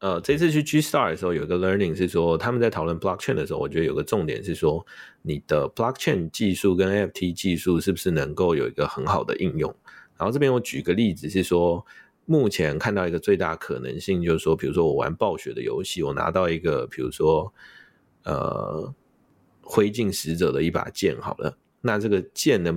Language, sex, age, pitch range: Chinese, male, 30-49, 85-110 Hz